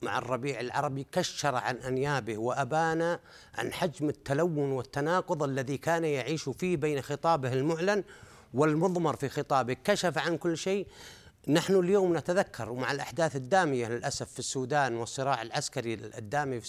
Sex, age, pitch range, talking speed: male, 50-69, 145-195 Hz, 135 wpm